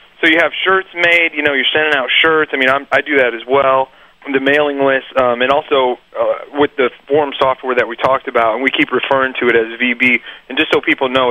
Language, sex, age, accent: English, male, 30-49, American